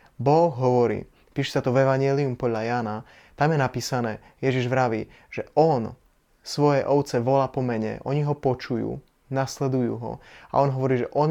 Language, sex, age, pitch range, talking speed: Slovak, male, 20-39, 125-140 Hz, 160 wpm